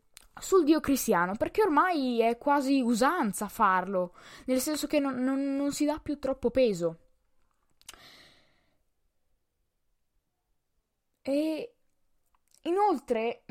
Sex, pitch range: female, 230-295 Hz